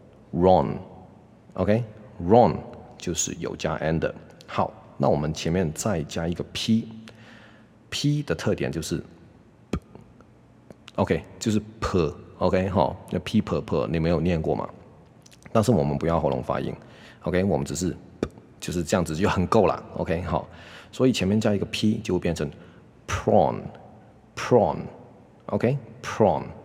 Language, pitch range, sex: Chinese, 85-110 Hz, male